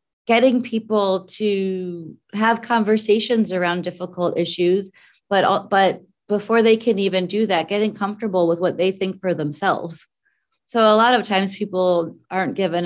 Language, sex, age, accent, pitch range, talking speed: English, female, 30-49, American, 160-195 Hz, 150 wpm